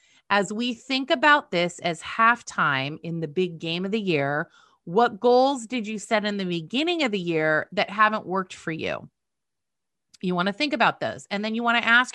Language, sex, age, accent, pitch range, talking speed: English, female, 30-49, American, 180-240 Hz, 205 wpm